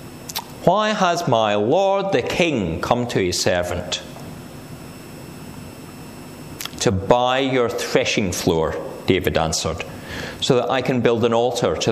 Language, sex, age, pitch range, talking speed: English, male, 40-59, 95-155 Hz, 125 wpm